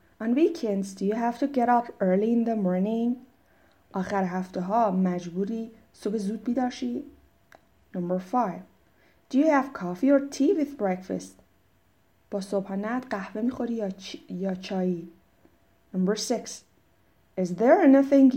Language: Persian